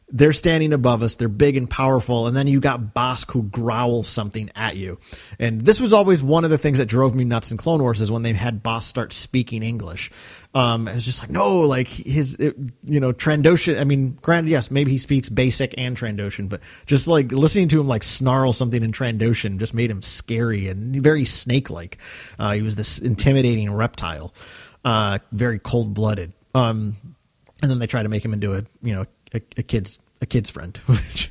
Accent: American